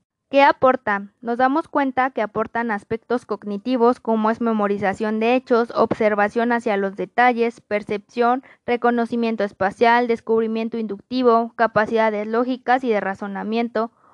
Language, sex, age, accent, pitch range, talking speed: Spanish, female, 20-39, Mexican, 210-240 Hz, 120 wpm